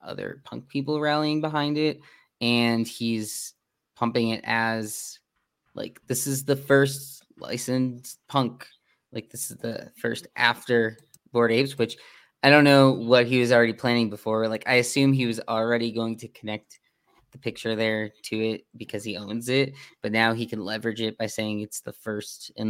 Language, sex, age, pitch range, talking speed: English, male, 20-39, 110-135 Hz, 175 wpm